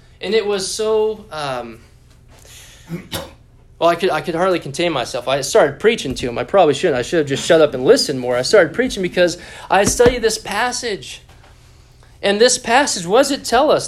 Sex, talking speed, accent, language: male, 195 wpm, American, English